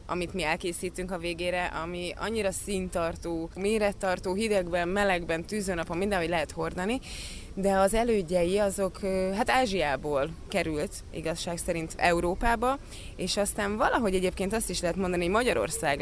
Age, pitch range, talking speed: 20-39, 165-195 Hz, 135 wpm